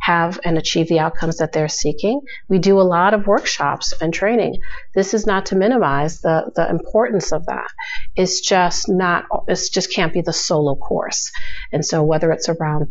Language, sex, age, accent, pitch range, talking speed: English, female, 40-59, American, 155-195 Hz, 190 wpm